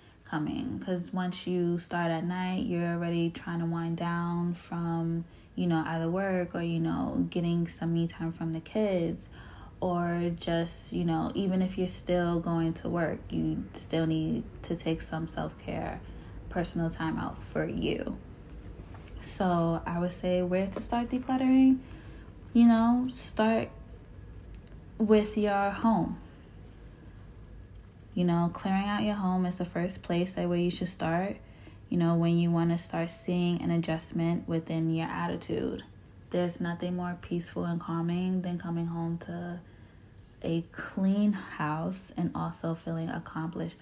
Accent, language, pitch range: American, English, 160-180 Hz